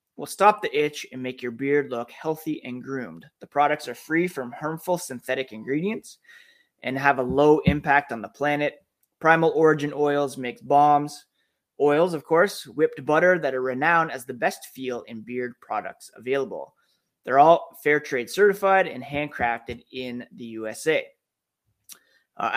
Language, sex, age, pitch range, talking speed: English, male, 20-39, 130-160 Hz, 160 wpm